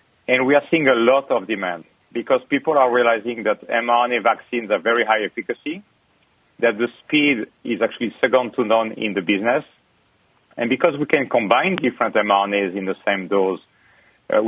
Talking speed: 175 wpm